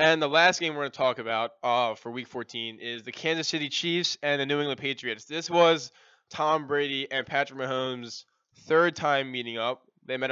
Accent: American